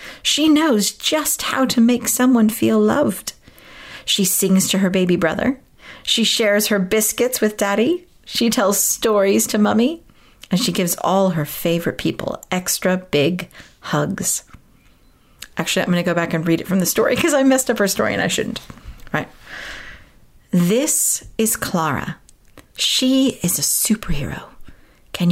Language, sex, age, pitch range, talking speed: English, female, 40-59, 185-245 Hz, 160 wpm